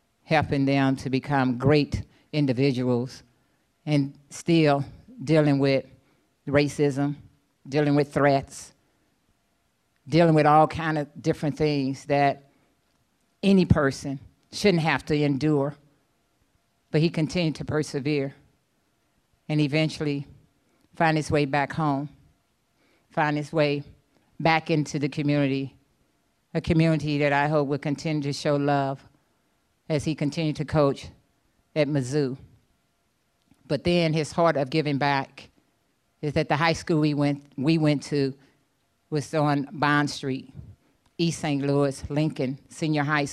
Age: 50-69